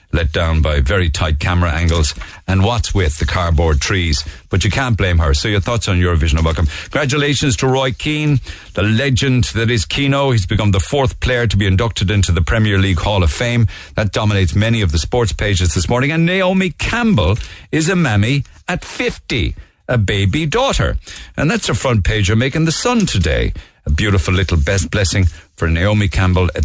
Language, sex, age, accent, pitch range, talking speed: English, male, 50-69, Irish, 85-110 Hz, 200 wpm